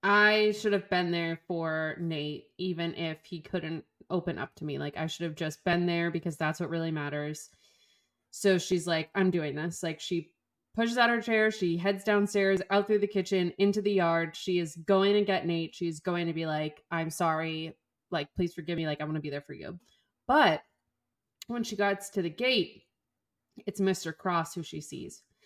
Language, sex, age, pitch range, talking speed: English, female, 20-39, 165-200 Hz, 205 wpm